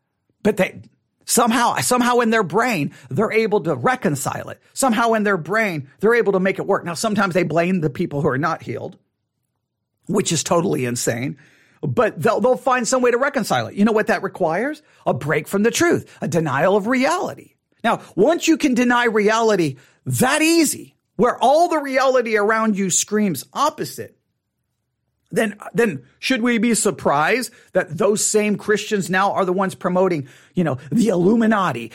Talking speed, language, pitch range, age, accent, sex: 175 wpm, English, 170-255 Hz, 40-59, American, male